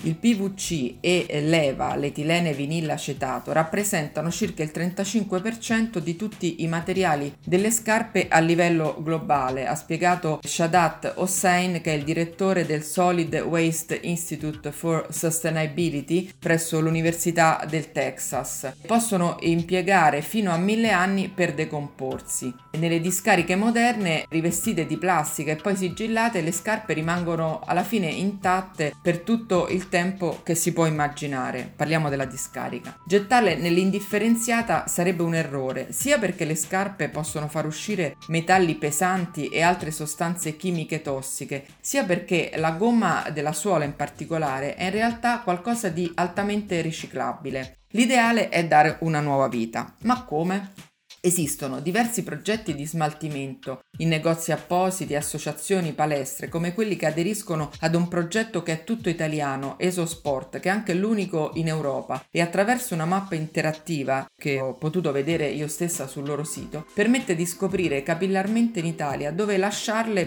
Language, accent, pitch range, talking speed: Italian, native, 155-185 Hz, 140 wpm